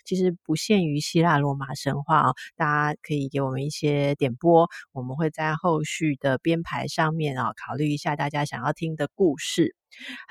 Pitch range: 145-180 Hz